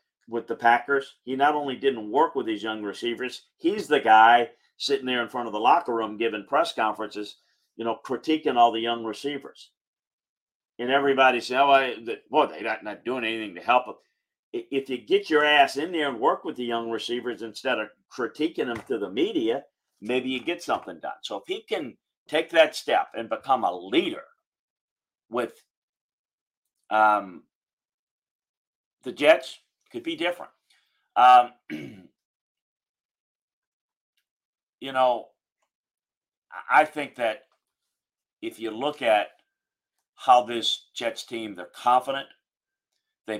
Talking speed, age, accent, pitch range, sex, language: 145 wpm, 50-69, American, 115-150 Hz, male, English